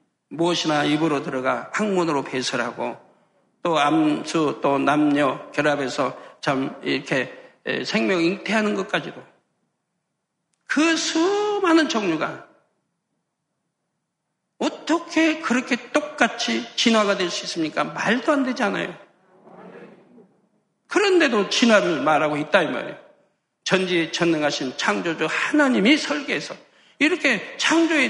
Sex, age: male, 60-79